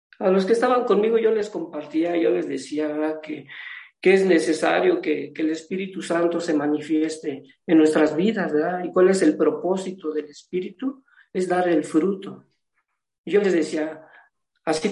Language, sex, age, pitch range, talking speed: Spanish, male, 50-69, 170-225 Hz, 165 wpm